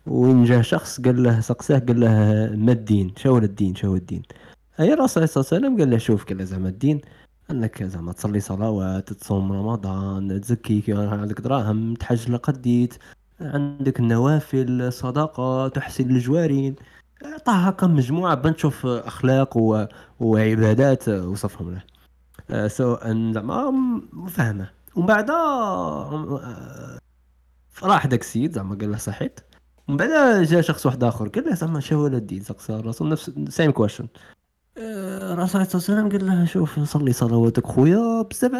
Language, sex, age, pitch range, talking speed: Arabic, male, 20-39, 105-150 Hz, 140 wpm